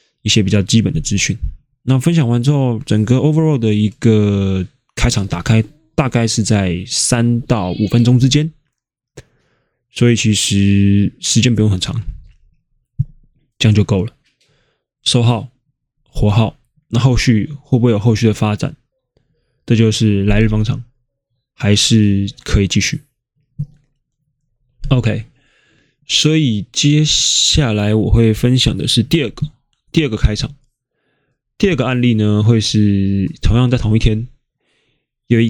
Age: 20-39